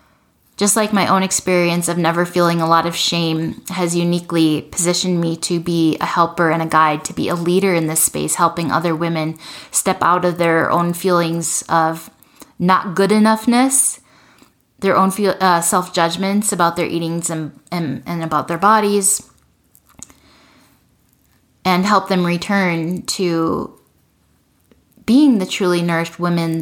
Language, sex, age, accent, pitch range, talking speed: English, female, 10-29, American, 165-190 Hz, 150 wpm